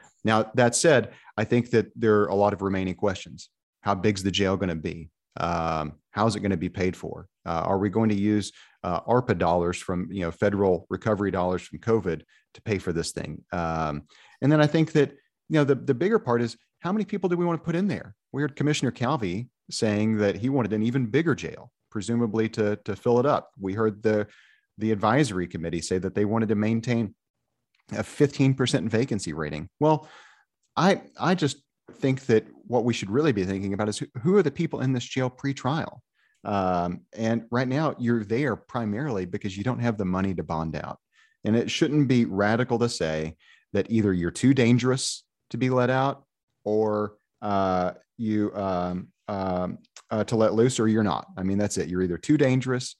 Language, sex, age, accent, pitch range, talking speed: English, male, 40-59, American, 95-125 Hz, 210 wpm